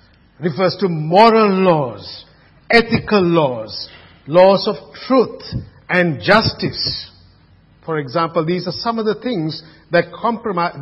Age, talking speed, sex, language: 50-69, 115 wpm, male, English